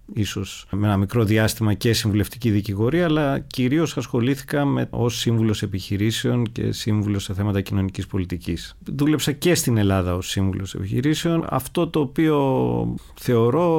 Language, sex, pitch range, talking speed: Greek, male, 100-135 Hz, 140 wpm